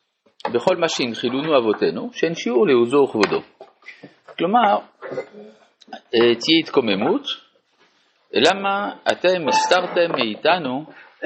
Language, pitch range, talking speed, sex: Hebrew, 110-170 Hz, 75 wpm, male